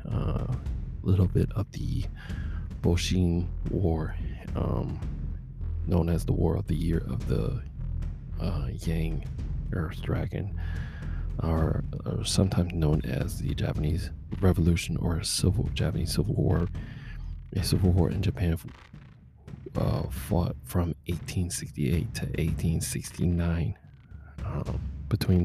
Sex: male